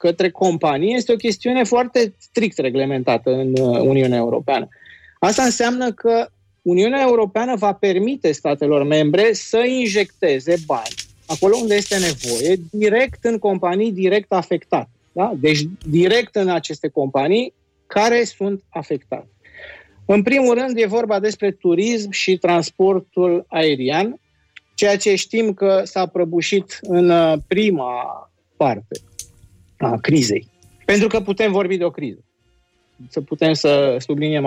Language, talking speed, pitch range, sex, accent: Romanian, 125 wpm, 150-215 Hz, male, native